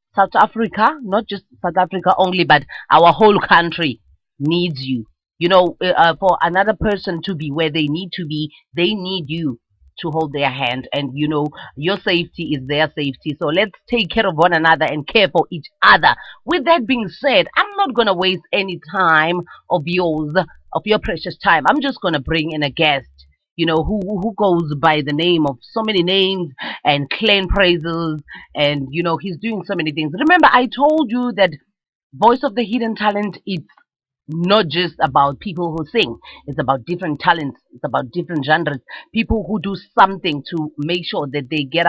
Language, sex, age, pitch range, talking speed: English, female, 30-49, 155-205 Hz, 195 wpm